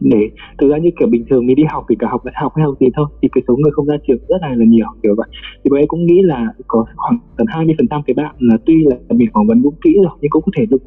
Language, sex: Vietnamese, male